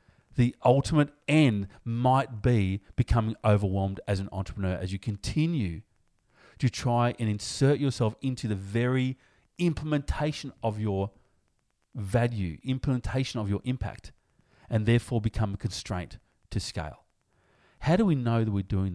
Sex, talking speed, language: male, 135 wpm, English